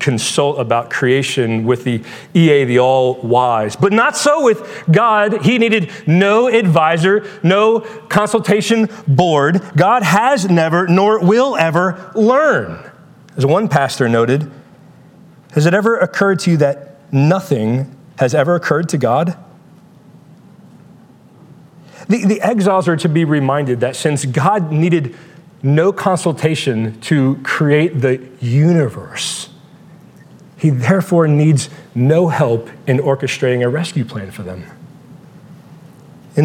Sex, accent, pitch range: male, American, 140-185 Hz